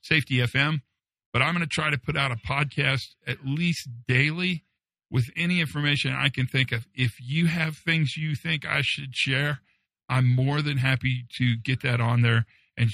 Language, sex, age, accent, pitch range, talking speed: English, male, 50-69, American, 120-150 Hz, 190 wpm